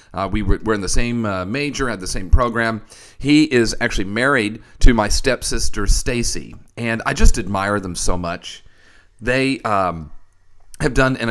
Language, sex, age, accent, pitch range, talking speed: English, male, 40-59, American, 95-120 Hz, 175 wpm